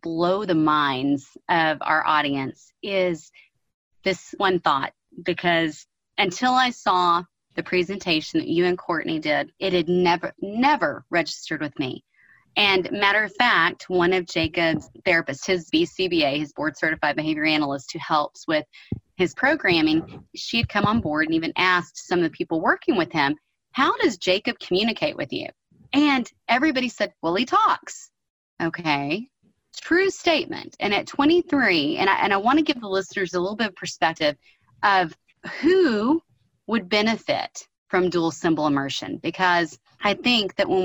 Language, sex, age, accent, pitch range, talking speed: English, female, 30-49, American, 160-220 Hz, 155 wpm